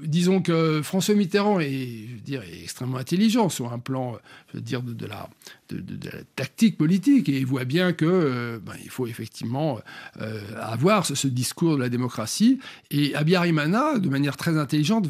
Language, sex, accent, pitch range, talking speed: French, male, French, 135-185 Hz, 195 wpm